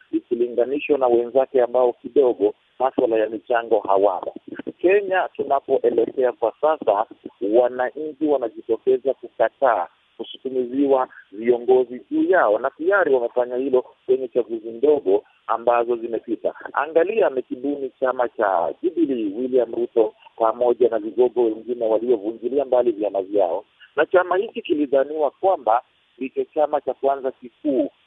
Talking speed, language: 115 wpm, Swahili